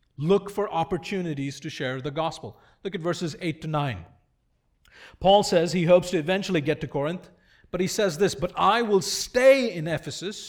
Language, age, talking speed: English, 40-59, 185 wpm